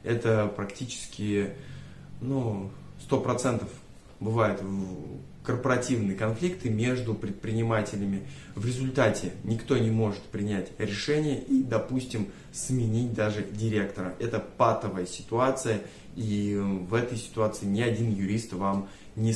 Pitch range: 100-125 Hz